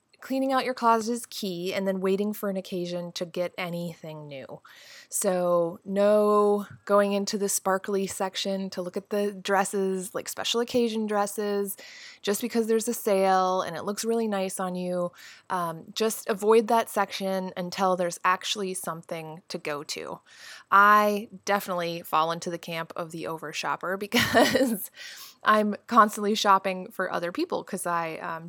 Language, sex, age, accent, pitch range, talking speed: English, female, 20-39, American, 180-230 Hz, 160 wpm